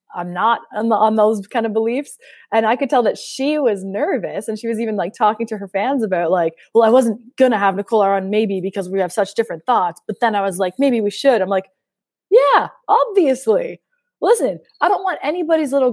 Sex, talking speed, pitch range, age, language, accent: female, 220 wpm, 195-275 Hz, 20-39, English, American